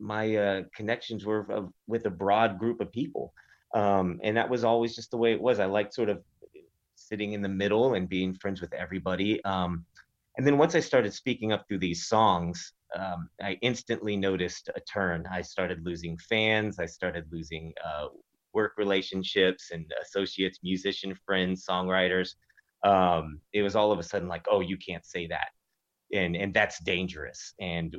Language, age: English, 30-49